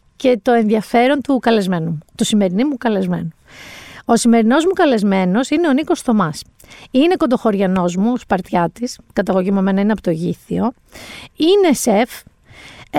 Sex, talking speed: female, 145 wpm